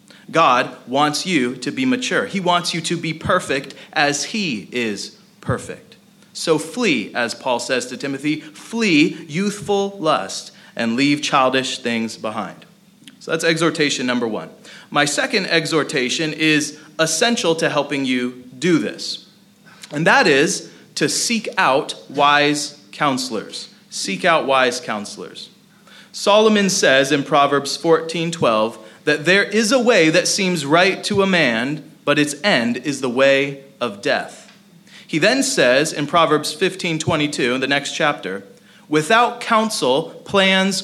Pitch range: 145-195 Hz